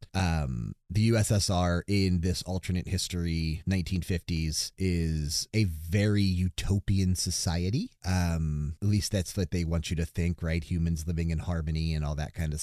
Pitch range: 85-105 Hz